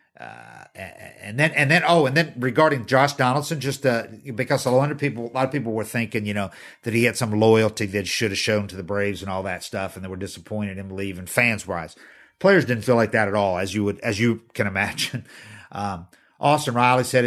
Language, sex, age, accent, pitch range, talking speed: English, male, 50-69, American, 105-125 Hz, 240 wpm